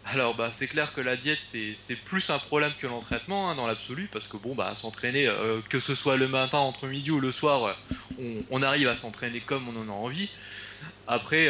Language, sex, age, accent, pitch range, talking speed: French, male, 20-39, French, 110-135 Hz, 235 wpm